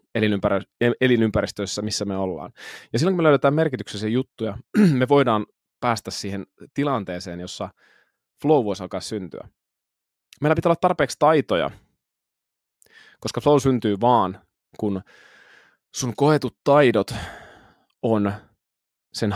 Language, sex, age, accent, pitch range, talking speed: Finnish, male, 20-39, native, 95-125 Hz, 115 wpm